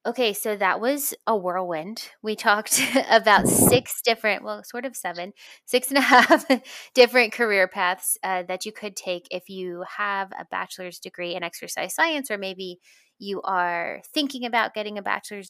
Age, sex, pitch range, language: 20-39, female, 175-205 Hz, English